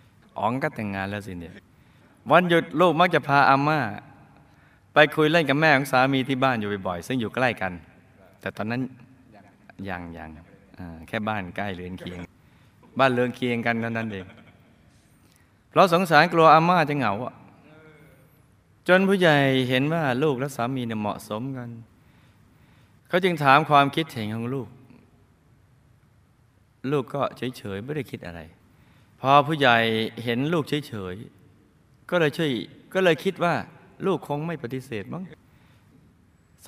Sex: male